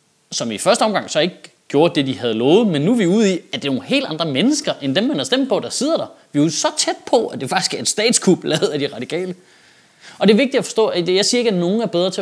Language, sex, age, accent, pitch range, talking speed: Danish, male, 20-39, native, 145-220 Hz, 310 wpm